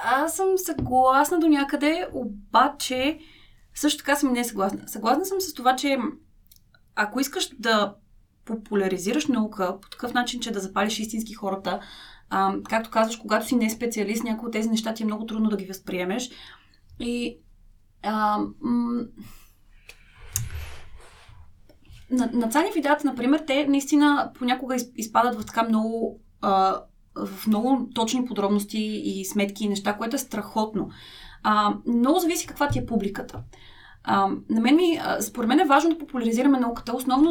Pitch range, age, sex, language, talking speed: 195-255 Hz, 20-39, female, Bulgarian, 150 wpm